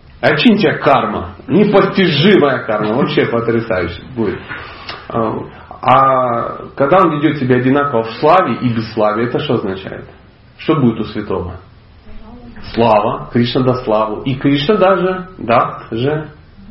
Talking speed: 130 wpm